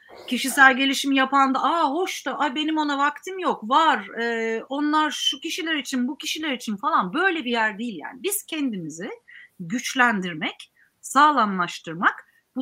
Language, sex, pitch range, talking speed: Turkish, female, 235-315 Hz, 145 wpm